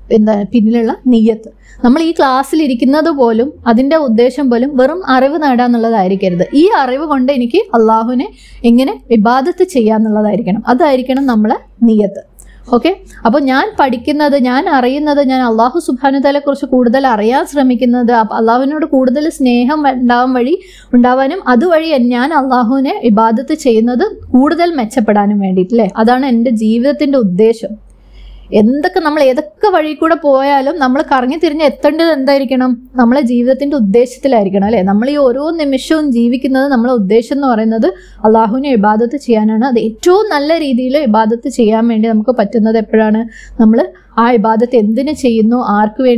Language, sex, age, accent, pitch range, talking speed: Malayalam, female, 20-39, native, 225-280 Hz, 130 wpm